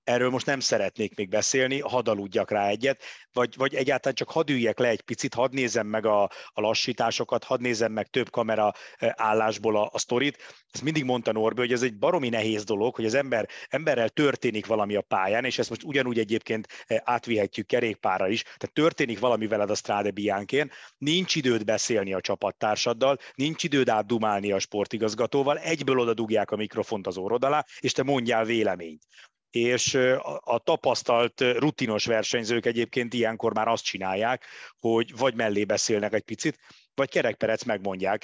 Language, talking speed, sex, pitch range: Hungarian, 165 wpm, male, 105-130 Hz